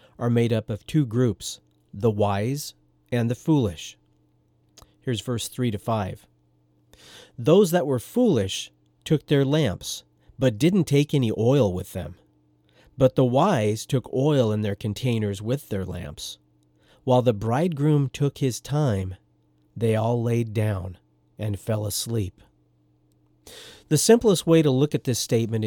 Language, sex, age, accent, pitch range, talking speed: English, male, 40-59, American, 95-130 Hz, 145 wpm